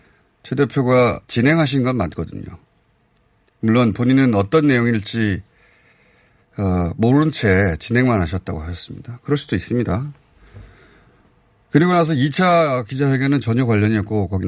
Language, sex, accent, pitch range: Korean, male, native, 100-135 Hz